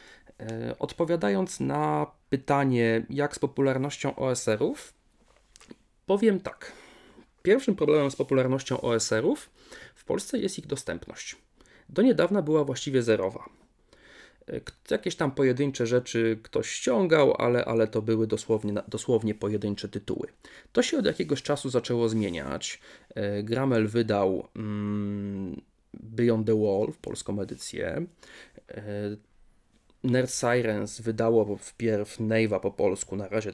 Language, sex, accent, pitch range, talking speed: Polish, male, native, 105-130 Hz, 110 wpm